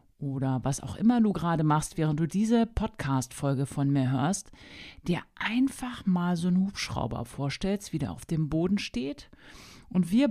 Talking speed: 170 wpm